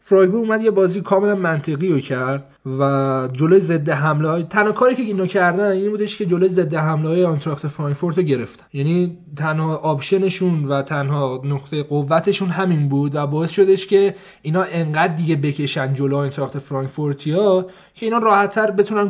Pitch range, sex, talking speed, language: 145-200 Hz, male, 165 wpm, Persian